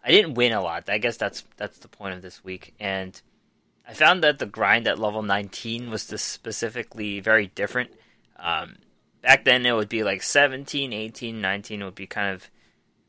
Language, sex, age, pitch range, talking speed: English, male, 20-39, 100-120 Hz, 195 wpm